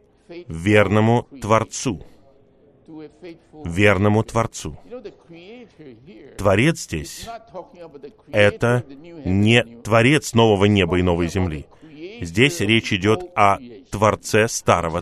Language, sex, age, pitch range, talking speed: Russian, male, 30-49, 105-140 Hz, 80 wpm